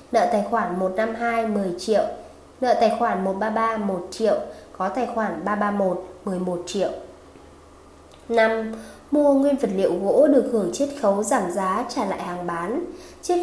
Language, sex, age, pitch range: Vietnamese, female, 20-39, 190-245 Hz